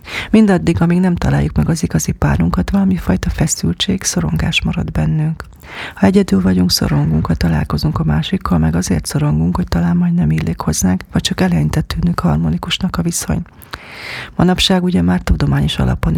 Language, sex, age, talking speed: Hungarian, female, 40-59, 155 wpm